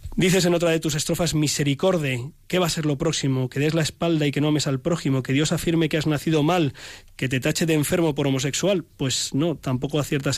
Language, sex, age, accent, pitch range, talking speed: Spanish, male, 20-39, Spanish, 135-160 Hz, 235 wpm